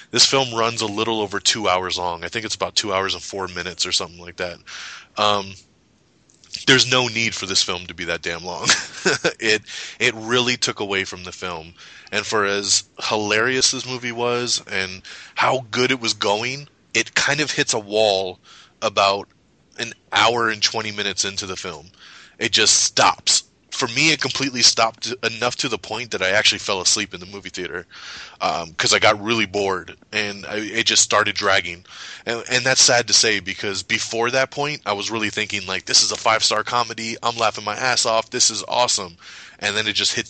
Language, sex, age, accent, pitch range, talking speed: English, male, 20-39, American, 100-120 Hz, 200 wpm